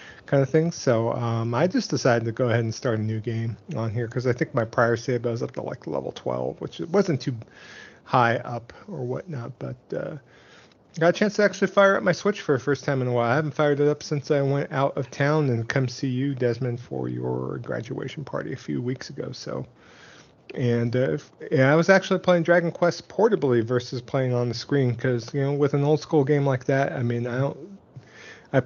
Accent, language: American, English